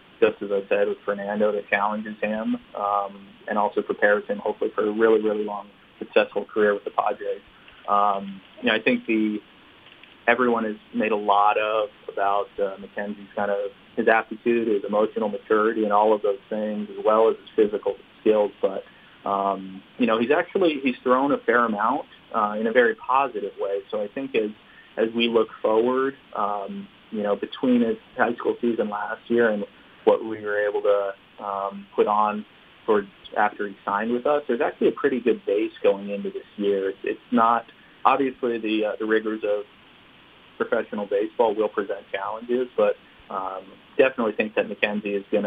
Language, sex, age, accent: English, male, 30-49, American